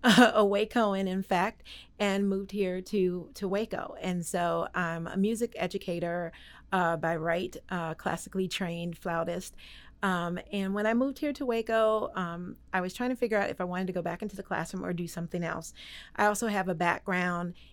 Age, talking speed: 40-59, 190 wpm